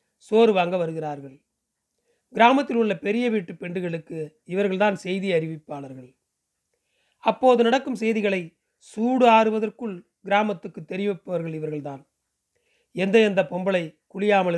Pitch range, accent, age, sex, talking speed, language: 180-210 Hz, native, 40-59, male, 95 wpm, Tamil